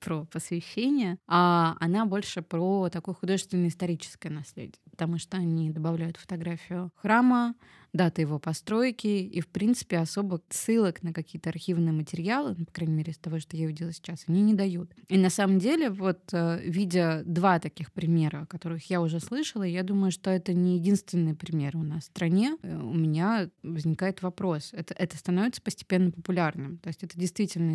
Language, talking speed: Russian, 170 wpm